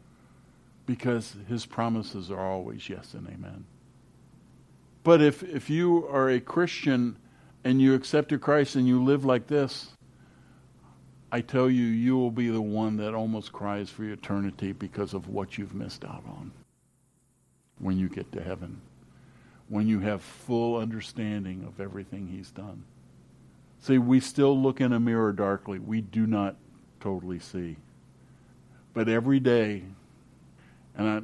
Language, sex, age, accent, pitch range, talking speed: English, male, 60-79, American, 95-120 Hz, 145 wpm